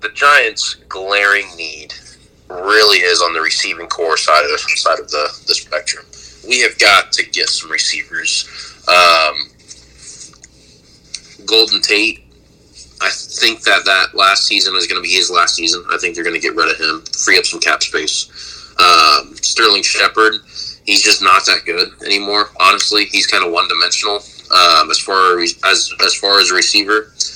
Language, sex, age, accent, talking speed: English, male, 20-39, American, 170 wpm